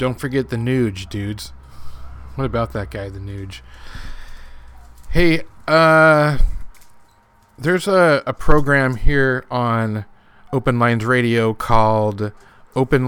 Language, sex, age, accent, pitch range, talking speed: English, male, 30-49, American, 105-135 Hz, 110 wpm